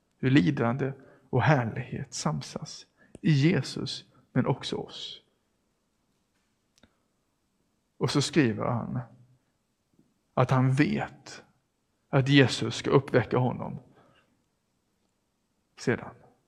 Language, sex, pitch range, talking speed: English, male, 130-155 Hz, 85 wpm